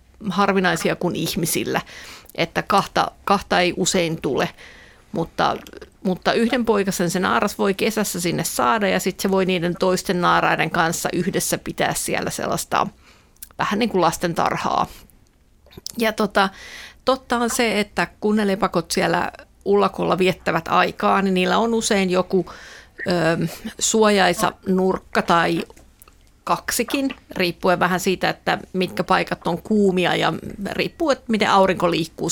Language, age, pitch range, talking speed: Finnish, 50-69, 180-215 Hz, 135 wpm